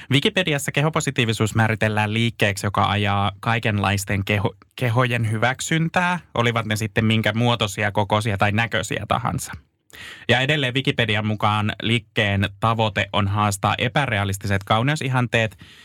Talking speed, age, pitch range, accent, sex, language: 105 wpm, 20-39, 105-130 Hz, native, male, Finnish